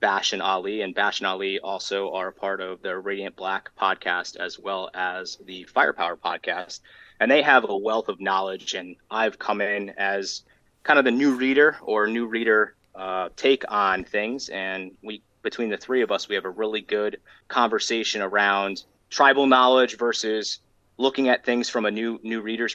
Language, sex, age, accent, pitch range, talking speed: English, male, 30-49, American, 95-115 Hz, 185 wpm